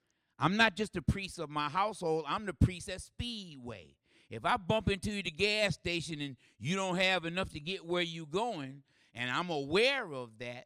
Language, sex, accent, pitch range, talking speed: English, male, American, 120-170 Hz, 195 wpm